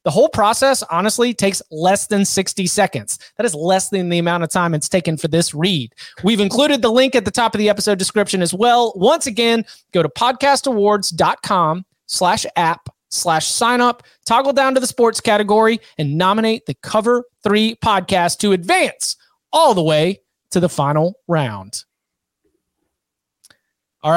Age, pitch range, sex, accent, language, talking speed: 30-49, 160-210 Hz, male, American, English, 165 wpm